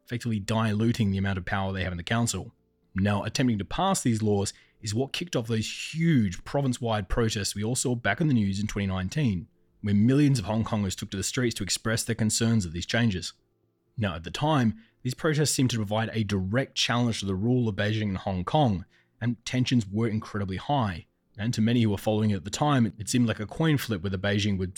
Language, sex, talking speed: English, male, 230 wpm